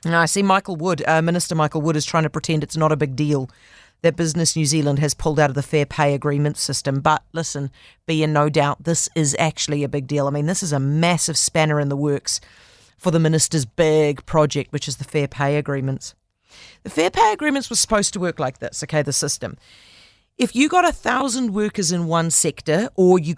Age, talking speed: 40-59, 225 wpm